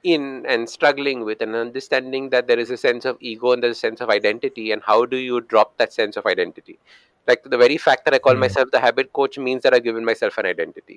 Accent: Indian